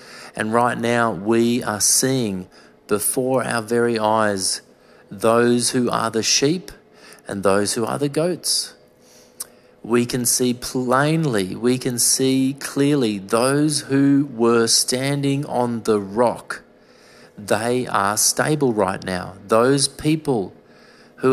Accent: Australian